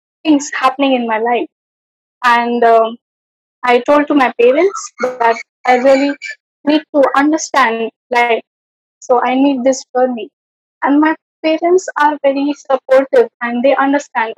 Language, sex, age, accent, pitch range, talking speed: English, female, 20-39, Indian, 240-290 Hz, 140 wpm